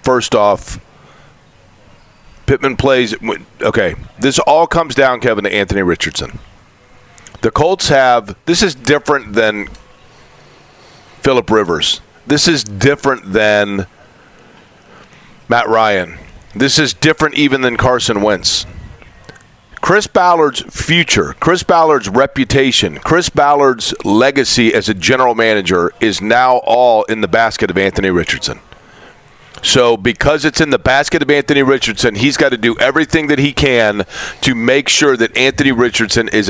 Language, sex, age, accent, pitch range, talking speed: English, male, 40-59, American, 105-140 Hz, 135 wpm